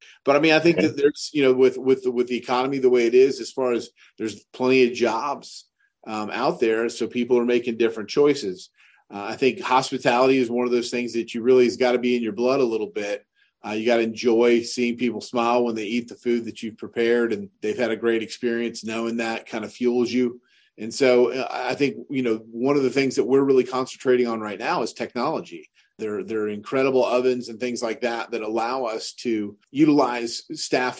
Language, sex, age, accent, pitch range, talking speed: English, male, 40-59, American, 115-130 Hz, 225 wpm